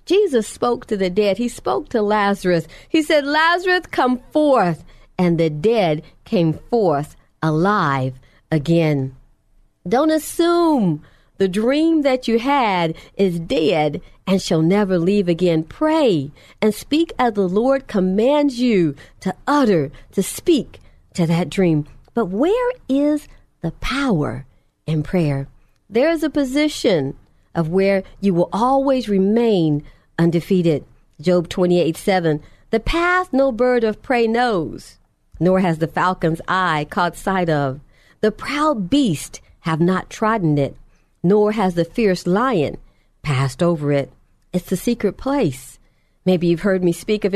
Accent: American